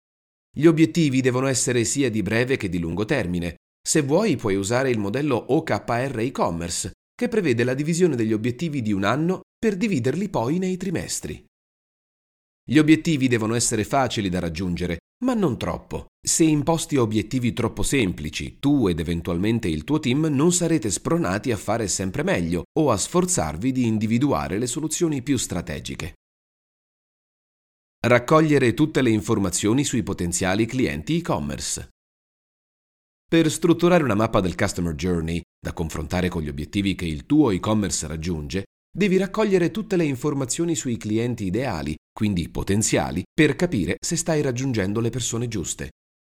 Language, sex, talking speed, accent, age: Italian, male, 145 wpm, native, 30-49